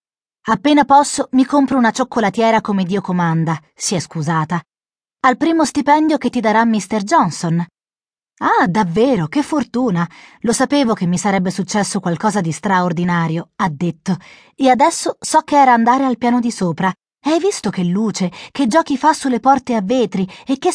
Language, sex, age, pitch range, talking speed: Italian, female, 30-49, 190-280 Hz, 170 wpm